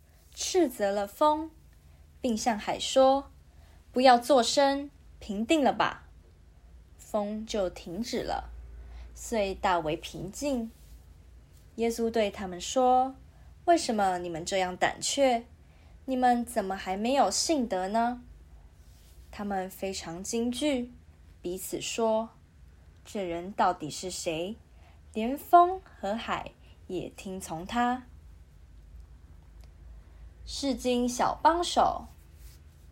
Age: 20-39